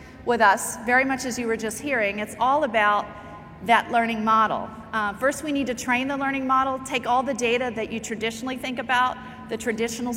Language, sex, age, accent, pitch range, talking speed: English, female, 40-59, American, 215-260 Hz, 205 wpm